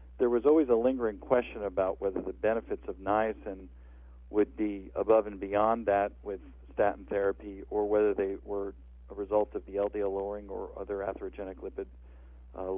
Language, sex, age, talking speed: English, male, 50-69, 170 wpm